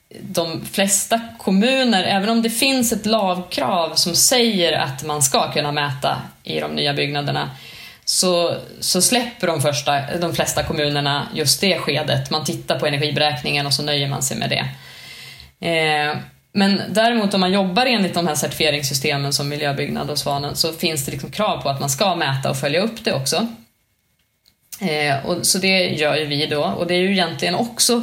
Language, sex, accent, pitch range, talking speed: Swedish, female, native, 150-210 Hz, 175 wpm